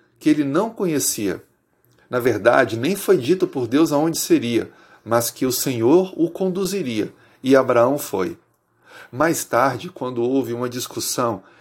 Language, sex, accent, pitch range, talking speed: Portuguese, male, Brazilian, 125-170 Hz, 145 wpm